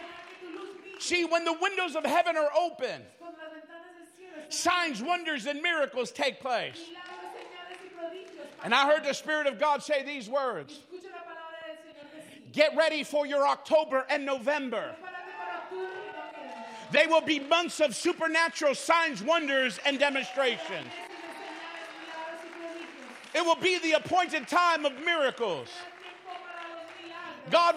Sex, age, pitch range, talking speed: male, 50-69, 290-345 Hz, 110 wpm